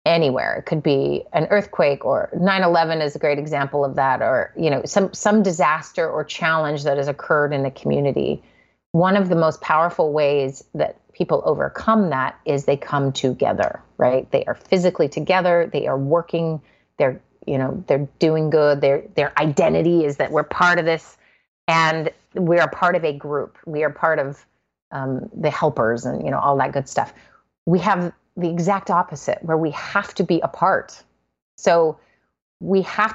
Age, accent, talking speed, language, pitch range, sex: 30-49, American, 180 wpm, English, 145-185 Hz, female